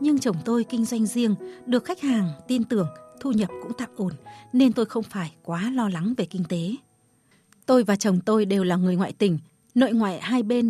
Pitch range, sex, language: 185-245 Hz, female, Vietnamese